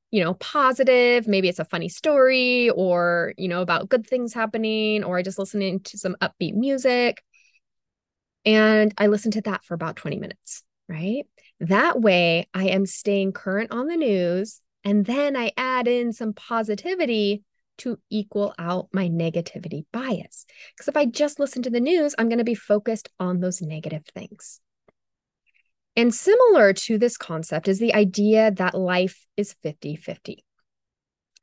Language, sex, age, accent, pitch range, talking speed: English, female, 20-39, American, 190-260 Hz, 160 wpm